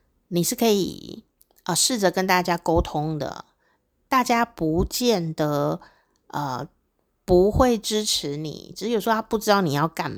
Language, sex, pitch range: Chinese, female, 155-195 Hz